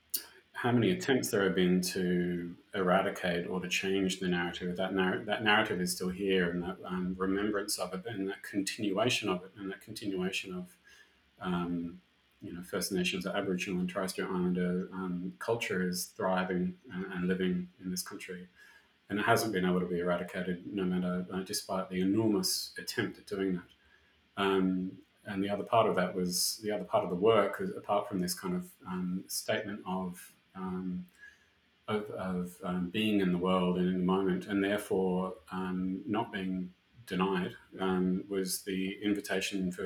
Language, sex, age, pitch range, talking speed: English, male, 30-49, 90-95 Hz, 180 wpm